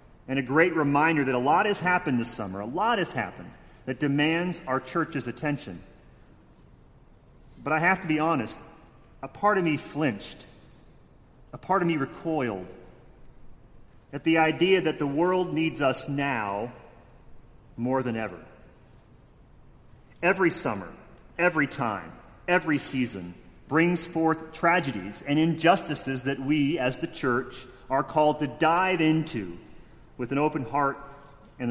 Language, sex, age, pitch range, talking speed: English, male, 40-59, 130-170 Hz, 140 wpm